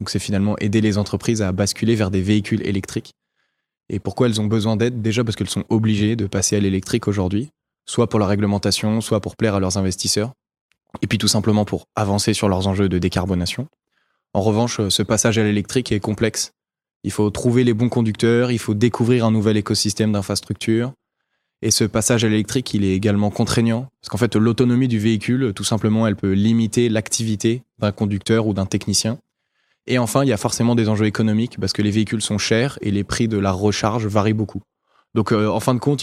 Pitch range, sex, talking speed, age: 105-120 Hz, male, 210 wpm, 20-39